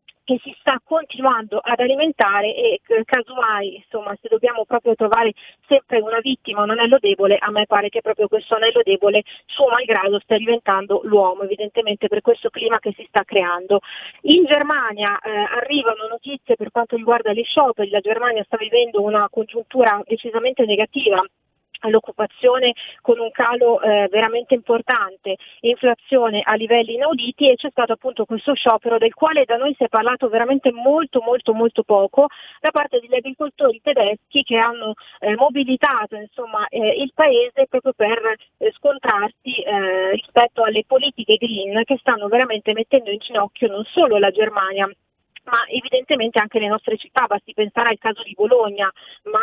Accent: native